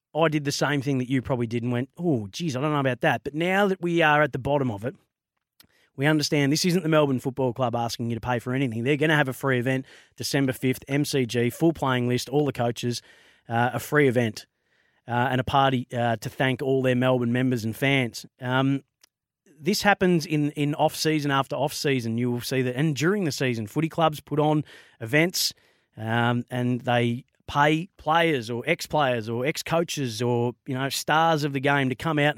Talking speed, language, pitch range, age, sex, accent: 215 wpm, English, 125-155 Hz, 30-49, male, Australian